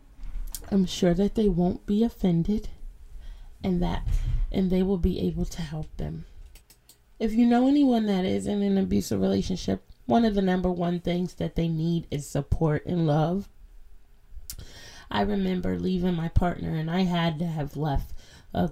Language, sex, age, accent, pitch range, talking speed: English, female, 20-39, American, 115-185 Hz, 165 wpm